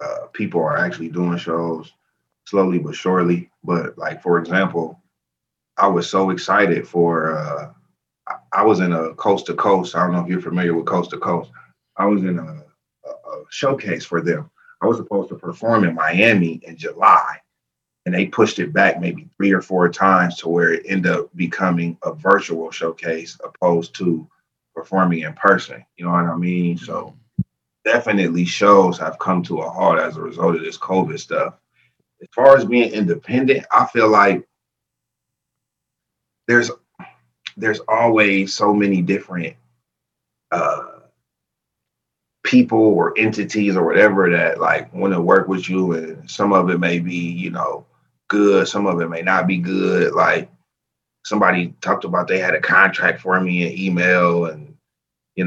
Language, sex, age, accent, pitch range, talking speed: English, male, 30-49, American, 85-95 Hz, 170 wpm